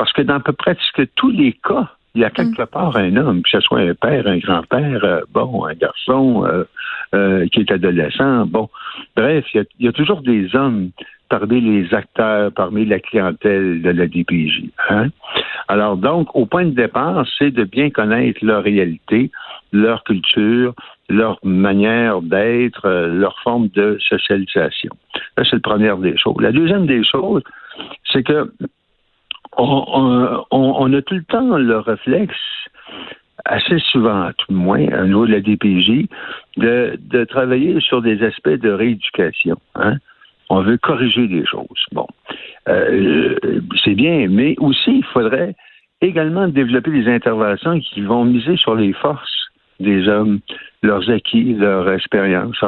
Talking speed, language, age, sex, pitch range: 160 wpm, French, 60-79, male, 100-130 Hz